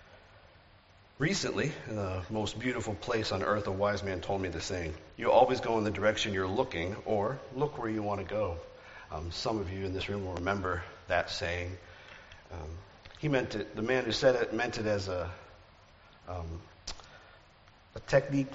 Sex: male